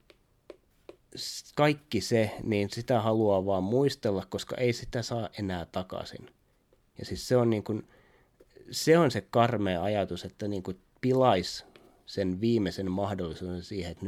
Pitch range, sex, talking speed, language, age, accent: 95-125 Hz, male, 135 wpm, Finnish, 30-49, native